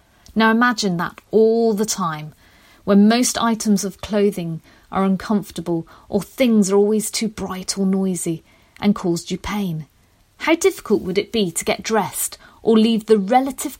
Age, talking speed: 40-59, 160 wpm